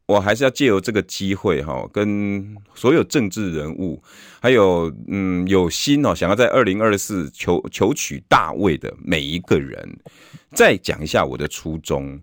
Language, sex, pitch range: Chinese, male, 85-135 Hz